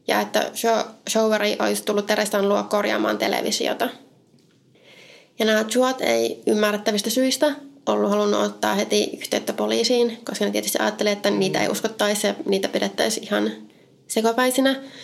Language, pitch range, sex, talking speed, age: Finnish, 205-235 Hz, female, 135 wpm, 20-39